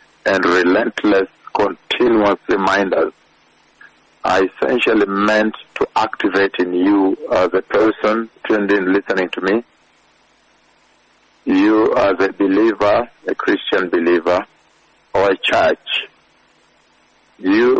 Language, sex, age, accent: English, male, 60-79, French